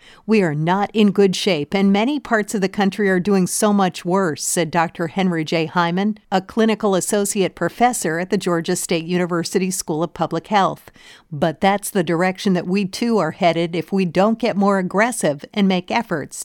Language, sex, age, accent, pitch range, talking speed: English, female, 50-69, American, 175-215 Hz, 195 wpm